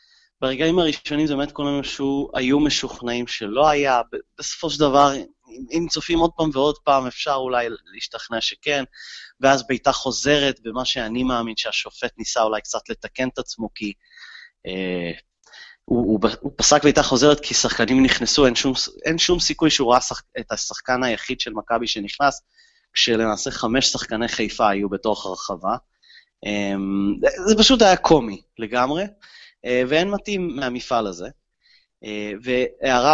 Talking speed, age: 145 wpm, 30-49